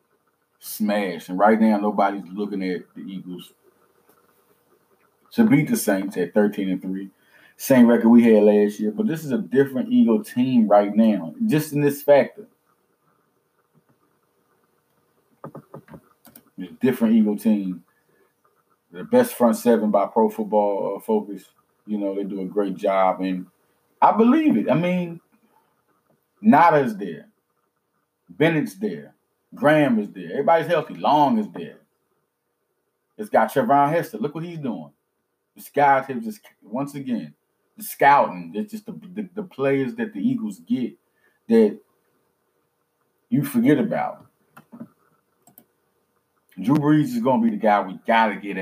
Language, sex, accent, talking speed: English, male, American, 140 wpm